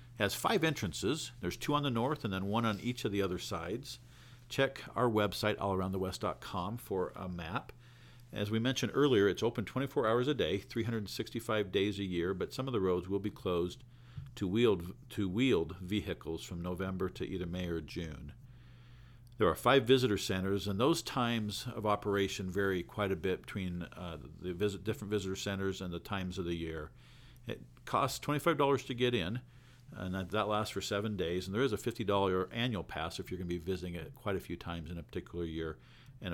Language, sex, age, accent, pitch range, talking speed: English, male, 50-69, American, 90-125 Hz, 200 wpm